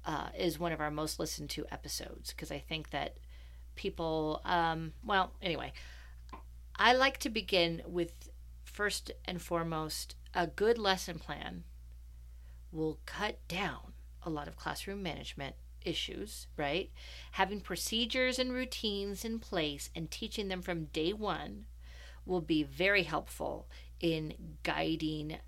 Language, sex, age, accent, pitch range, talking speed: English, female, 40-59, American, 120-200 Hz, 135 wpm